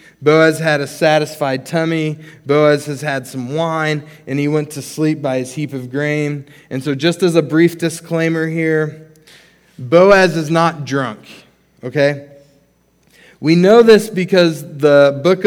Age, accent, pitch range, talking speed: 20-39, American, 140-165 Hz, 150 wpm